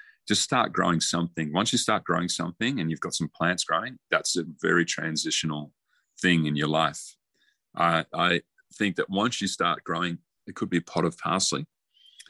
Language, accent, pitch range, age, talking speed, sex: English, Australian, 80-95 Hz, 30-49, 185 wpm, male